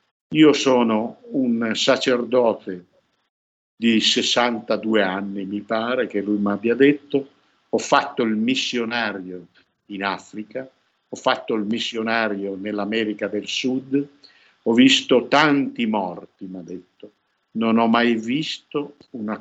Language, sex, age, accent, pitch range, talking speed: Italian, male, 60-79, native, 105-145 Hz, 120 wpm